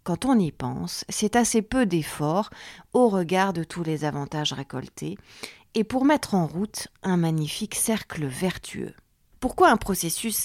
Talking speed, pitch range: 155 wpm, 155-225 Hz